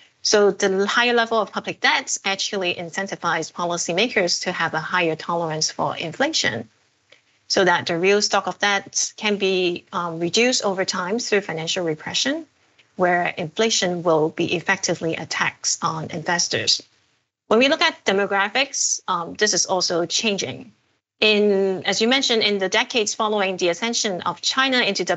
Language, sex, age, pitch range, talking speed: English, female, 30-49, 175-220 Hz, 155 wpm